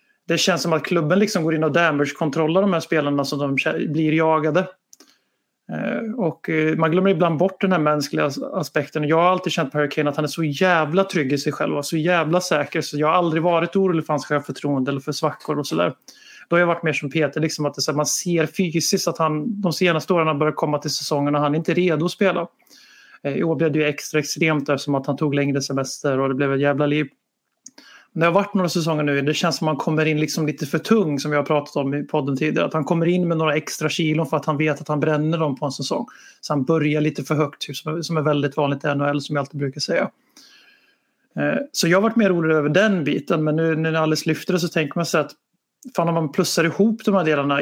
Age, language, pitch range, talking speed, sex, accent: 30-49, Swedish, 150-175 Hz, 255 wpm, male, native